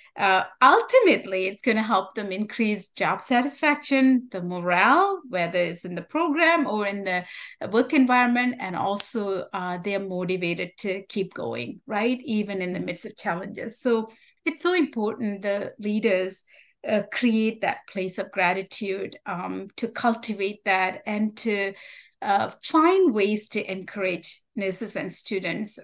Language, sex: English, female